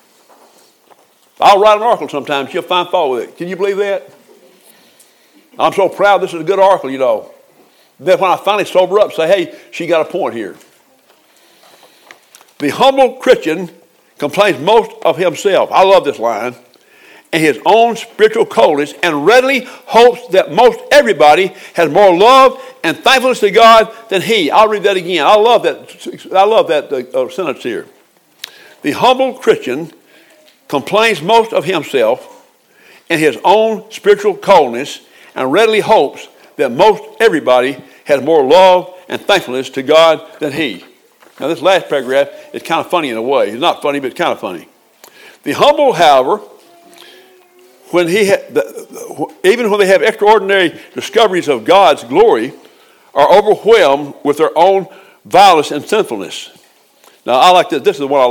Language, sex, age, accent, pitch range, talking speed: English, male, 60-79, American, 185-310 Hz, 165 wpm